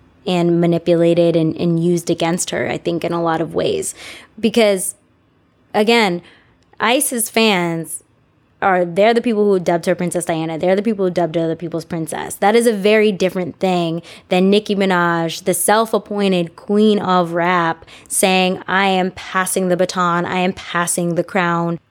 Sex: female